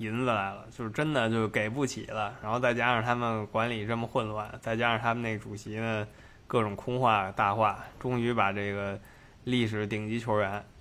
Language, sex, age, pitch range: Chinese, male, 20-39, 105-130 Hz